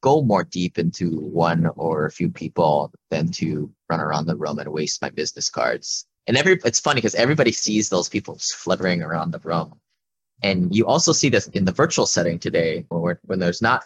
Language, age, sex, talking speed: English, 20-39, male, 205 wpm